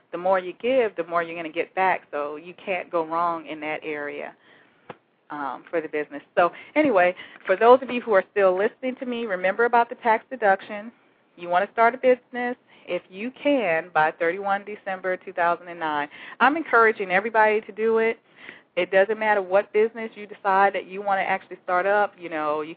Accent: American